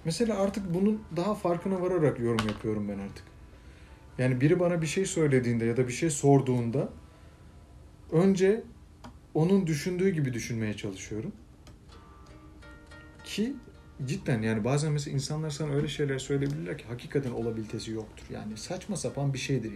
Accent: native